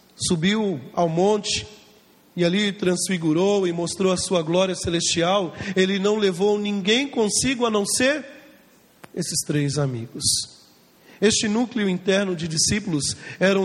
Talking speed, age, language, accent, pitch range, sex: 130 wpm, 40-59, Portuguese, Brazilian, 170-230 Hz, male